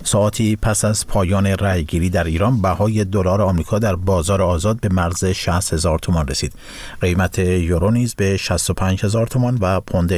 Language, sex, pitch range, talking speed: Persian, male, 85-105 Hz, 155 wpm